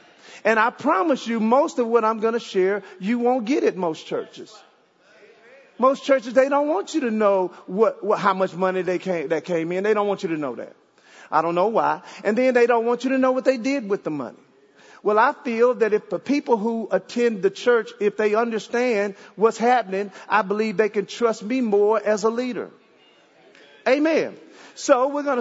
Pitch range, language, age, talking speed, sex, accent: 210-275 Hz, English, 40-59, 215 wpm, male, American